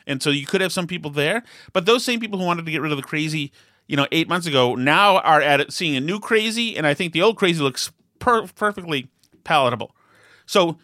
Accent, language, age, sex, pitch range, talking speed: American, English, 30-49, male, 135-170 Hz, 245 wpm